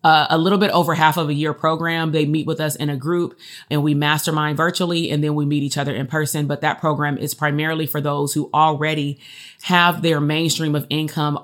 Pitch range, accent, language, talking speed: 145-165 Hz, American, English, 225 wpm